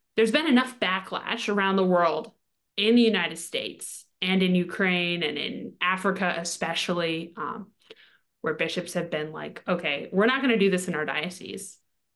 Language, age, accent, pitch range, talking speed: English, 20-39, American, 175-205 Hz, 170 wpm